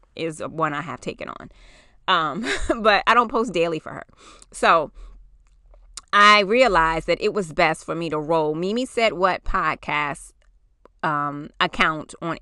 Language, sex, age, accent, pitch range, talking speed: English, female, 20-39, American, 170-220 Hz, 155 wpm